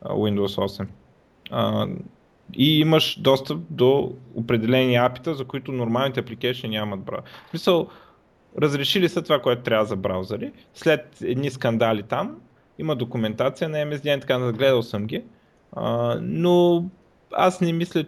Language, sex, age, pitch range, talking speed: Bulgarian, male, 20-39, 110-135 Hz, 130 wpm